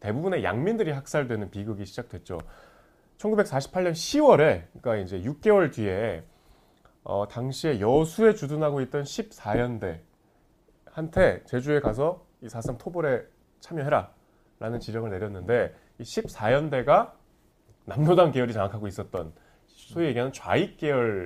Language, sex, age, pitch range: Korean, male, 30-49, 105-160 Hz